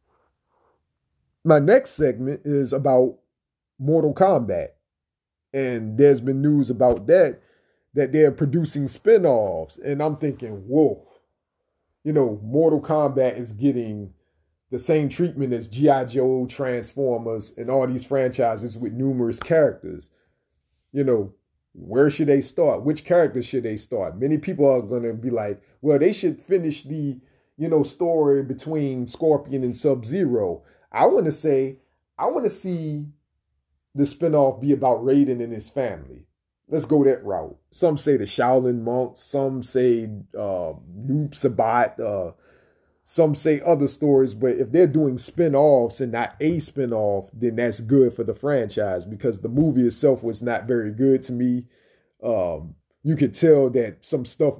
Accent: American